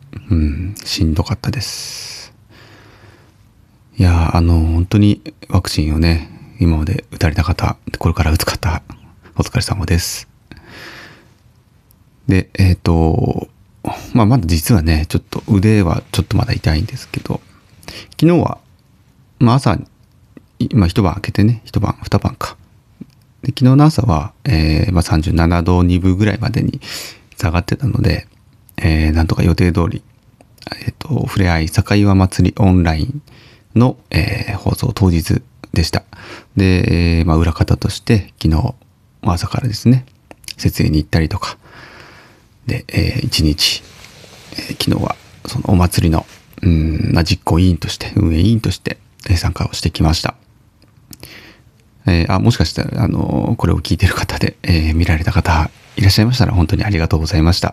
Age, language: 30-49, Japanese